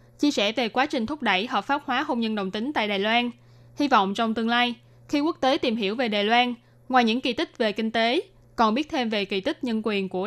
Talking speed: 270 wpm